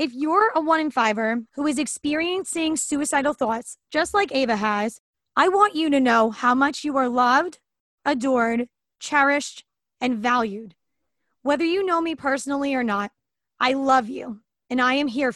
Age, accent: 20-39, American